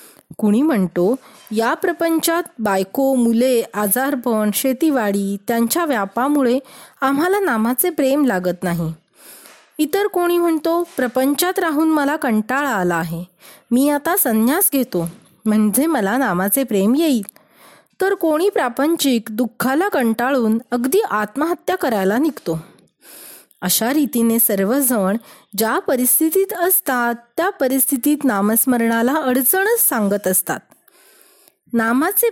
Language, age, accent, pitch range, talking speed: Marathi, 30-49, native, 220-320 Hz, 100 wpm